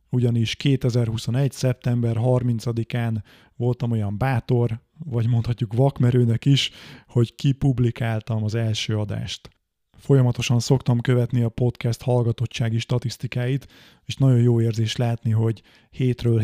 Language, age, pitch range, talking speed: Hungarian, 30-49, 115-130 Hz, 110 wpm